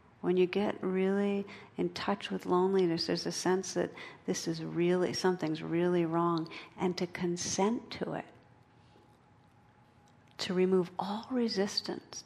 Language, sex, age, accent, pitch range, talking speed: English, female, 50-69, American, 165-190 Hz, 130 wpm